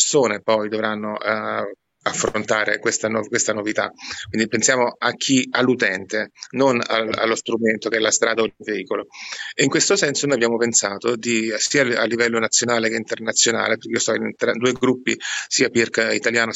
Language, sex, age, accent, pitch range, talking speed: Italian, male, 30-49, native, 110-125 Hz, 180 wpm